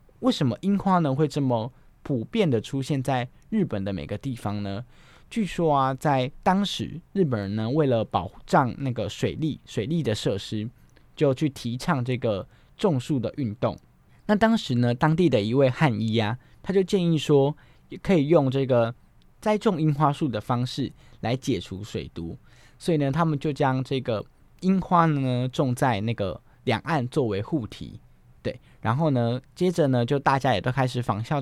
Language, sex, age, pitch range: Chinese, male, 20-39, 115-155 Hz